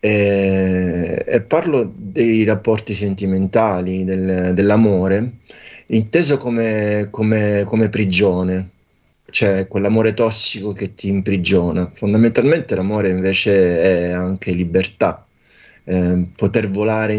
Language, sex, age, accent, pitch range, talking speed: French, male, 20-39, Italian, 95-110 Hz, 90 wpm